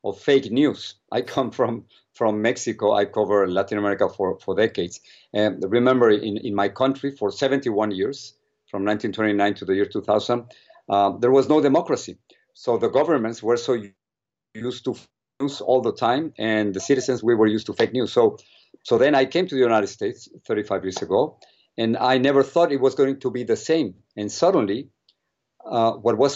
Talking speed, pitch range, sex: 190 wpm, 105-135 Hz, male